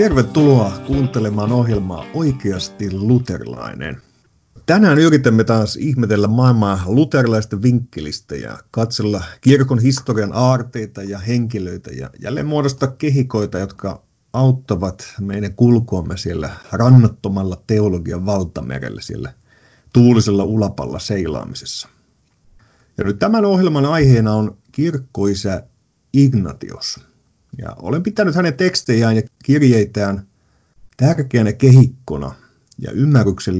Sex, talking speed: male, 95 wpm